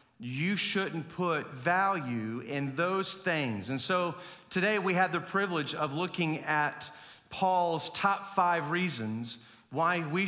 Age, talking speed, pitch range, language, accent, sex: 40-59, 135 wpm, 140-185 Hz, English, American, male